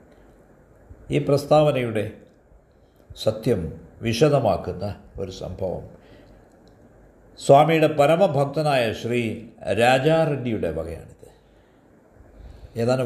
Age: 60-79